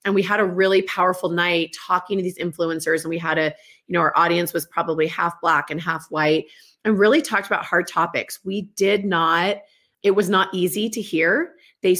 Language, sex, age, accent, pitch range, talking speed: English, female, 30-49, American, 165-195 Hz, 210 wpm